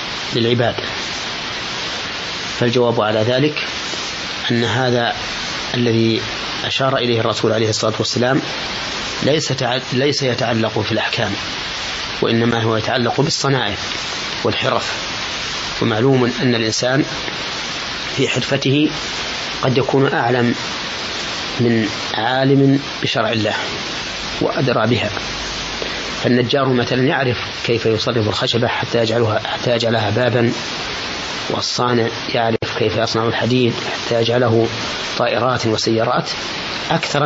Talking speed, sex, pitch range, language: 90 wpm, male, 115-130 Hz, Arabic